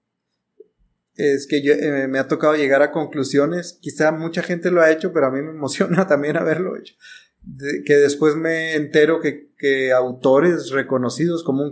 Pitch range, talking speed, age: 135-155 Hz, 180 wpm, 30-49